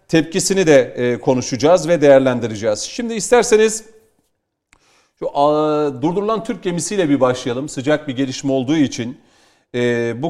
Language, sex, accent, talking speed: Turkish, male, native, 110 wpm